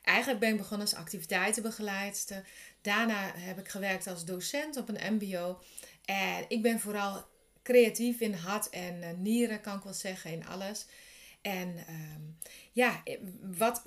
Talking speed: 145 wpm